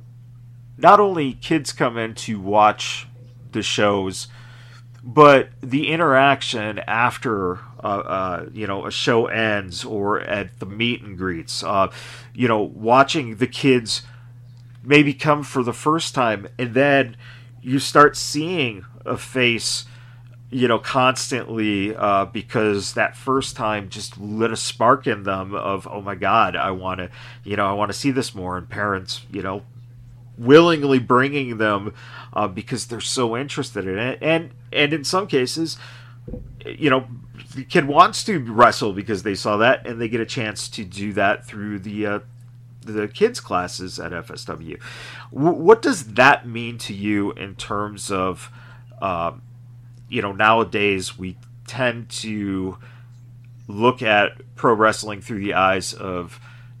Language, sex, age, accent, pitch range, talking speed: English, male, 40-59, American, 105-125 Hz, 150 wpm